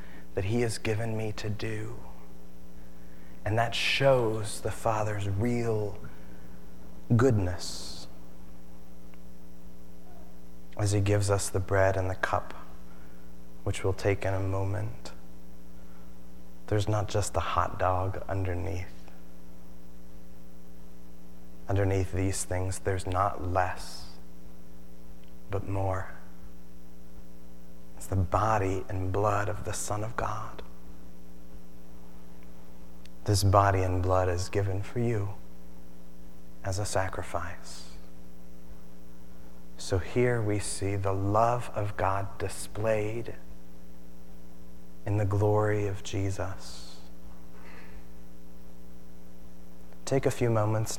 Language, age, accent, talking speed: English, 30-49, American, 100 wpm